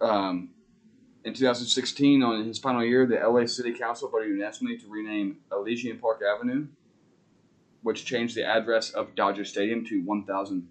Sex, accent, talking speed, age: male, American, 150 wpm, 20-39